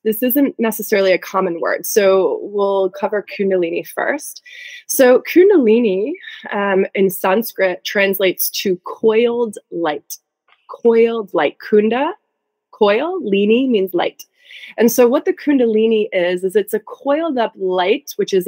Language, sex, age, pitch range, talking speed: English, female, 20-39, 180-235 Hz, 135 wpm